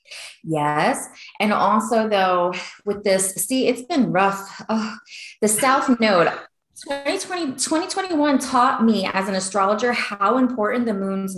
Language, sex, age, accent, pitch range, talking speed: English, female, 20-39, American, 185-250 Hz, 130 wpm